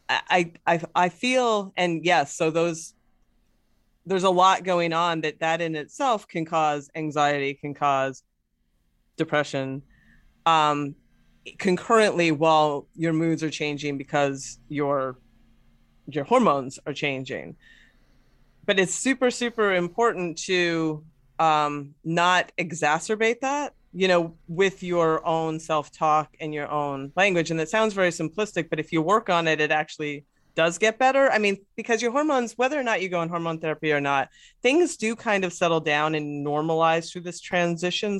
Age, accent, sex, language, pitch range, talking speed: 30-49, American, female, English, 150-190 Hz, 155 wpm